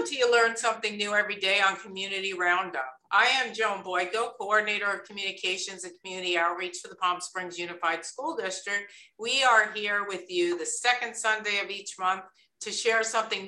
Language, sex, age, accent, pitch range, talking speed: English, female, 50-69, American, 180-220 Hz, 185 wpm